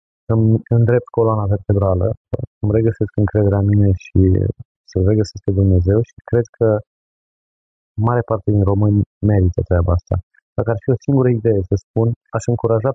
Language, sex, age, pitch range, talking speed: Romanian, male, 30-49, 95-115 Hz, 160 wpm